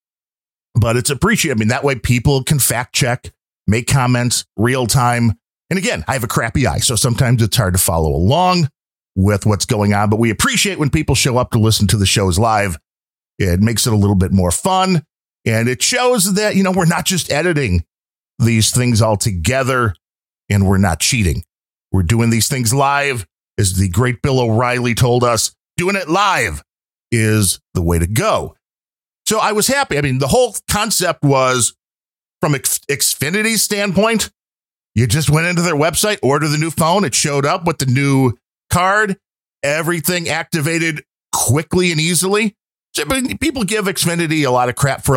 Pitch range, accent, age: 110-155 Hz, American, 40-59